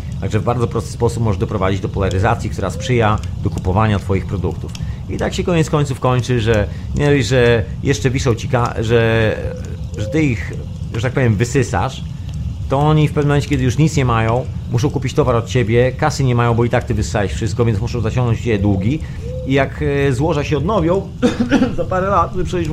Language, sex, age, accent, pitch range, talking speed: Polish, male, 40-59, native, 110-145 Hz, 195 wpm